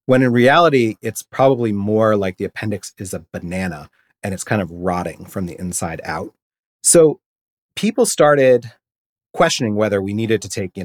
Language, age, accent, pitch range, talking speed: English, 30-49, American, 95-125 Hz, 170 wpm